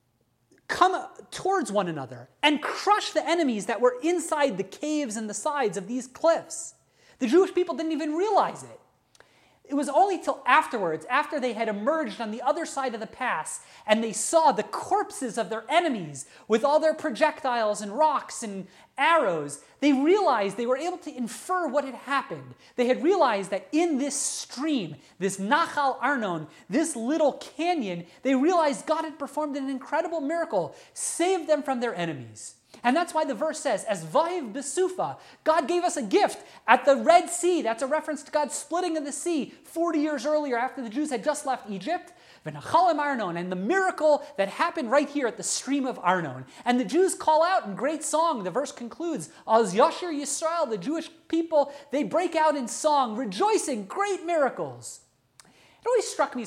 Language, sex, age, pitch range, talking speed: English, male, 30-49, 235-325 Hz, 185 wpm